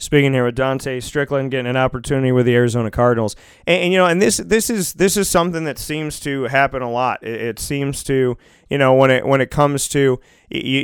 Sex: male